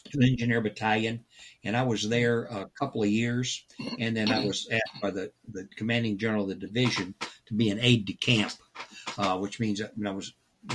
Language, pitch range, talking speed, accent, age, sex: English, 100-115 Hz, 210 wpm, American, 60-79, male